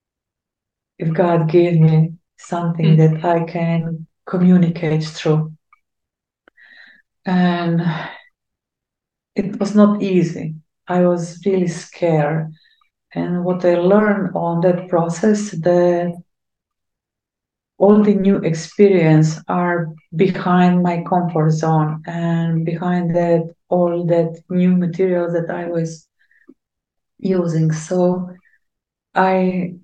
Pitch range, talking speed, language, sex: 170-195 Hz, 100 wpm, English, female